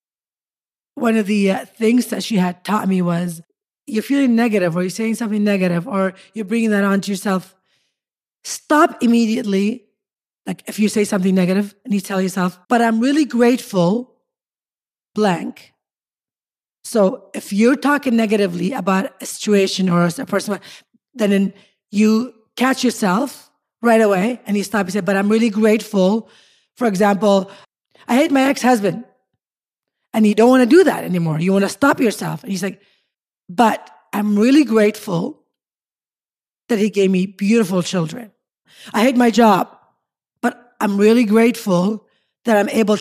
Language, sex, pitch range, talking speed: English, female, 190-235 Hz, 160 wpm